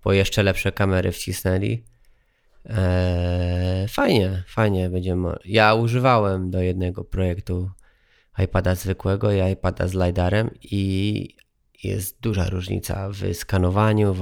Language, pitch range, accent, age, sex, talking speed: Polish, 95-110 Hz, native, 20-39, male, 115 wpm